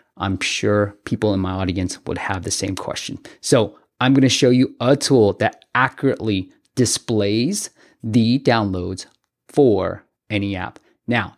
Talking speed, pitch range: 150 wpm, 105-140 Hz